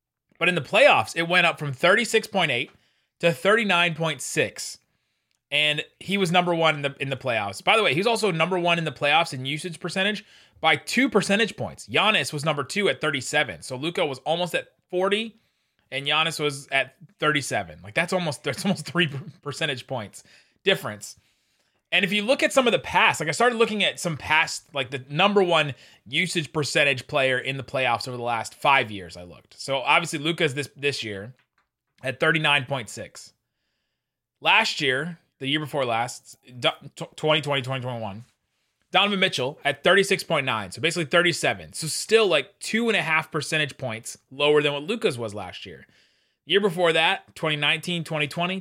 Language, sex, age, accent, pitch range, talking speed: English, male, 30-49, American, 135-175 Hz, 185 wpm